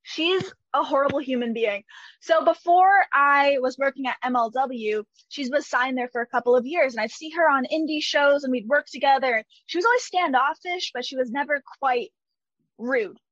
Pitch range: 235-305 Hz